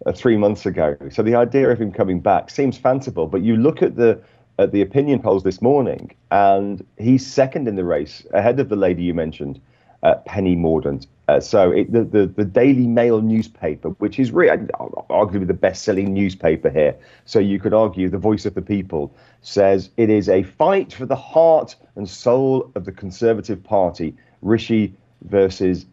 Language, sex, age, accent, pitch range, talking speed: English, male, 40-59, British, 90-115 Hz, 185 wpm